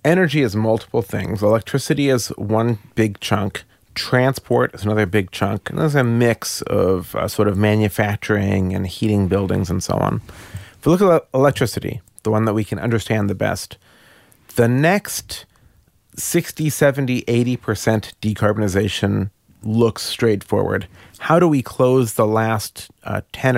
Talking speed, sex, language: 150 wpm, male, English